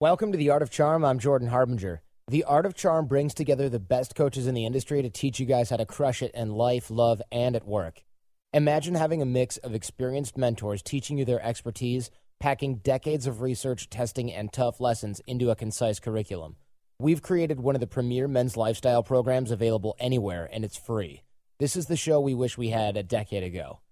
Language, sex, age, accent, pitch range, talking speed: English, male, 30-49, American, 110-135 Hz, 210 wpm